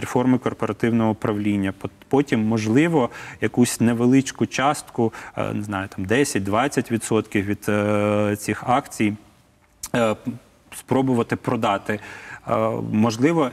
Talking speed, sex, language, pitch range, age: 80 wpm, male, Ukrainian, 105-120 Hz, 30-49